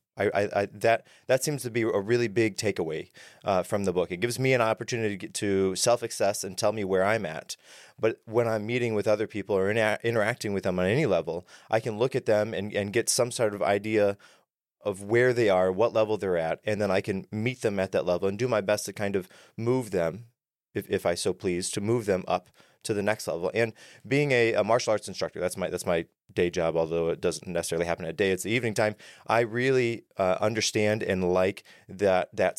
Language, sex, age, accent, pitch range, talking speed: English, male, 30-49, American, 100-120 Hz, 240 wpm